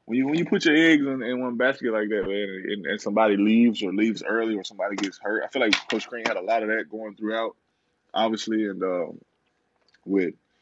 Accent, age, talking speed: American, 20-39, 230 wpm